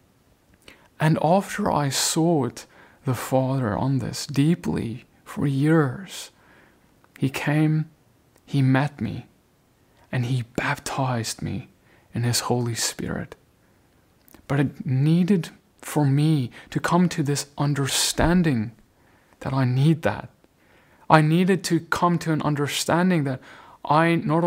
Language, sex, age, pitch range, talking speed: English, male, 30-49, 135-170 Hz, 120 wpm